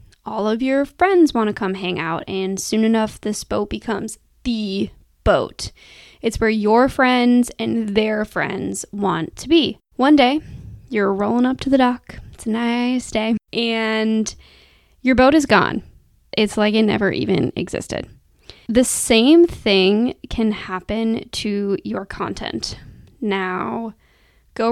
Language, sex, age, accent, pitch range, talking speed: English, female, 10-29, American, 215-250 Hz, 145 wpm